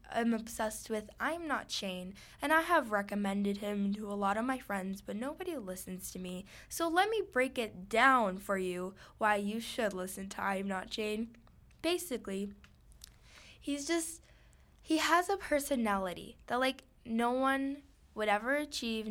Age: 10-29